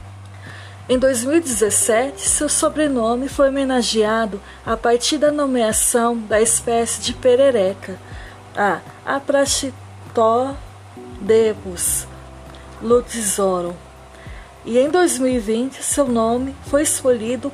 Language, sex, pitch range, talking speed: Portuguese, female, 175-260 Hz, 80 wpm